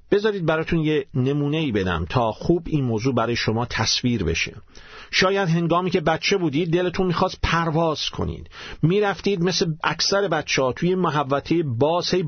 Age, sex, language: 50-69, male, Persian